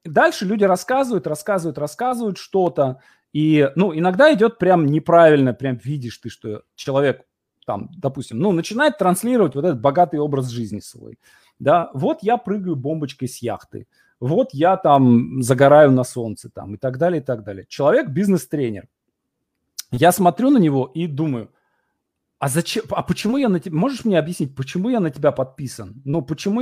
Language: Russian